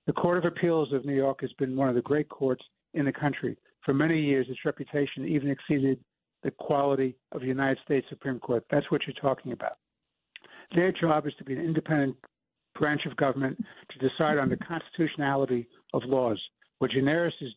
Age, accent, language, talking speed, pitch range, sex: 60-79, American, English, 195 wpm, 130-150 Hz, male